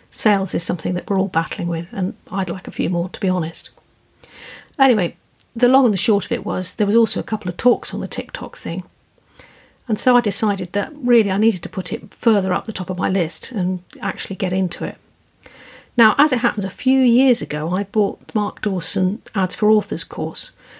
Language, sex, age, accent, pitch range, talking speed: English, female, 50-69, British, 185-230 Hz, 220 wpm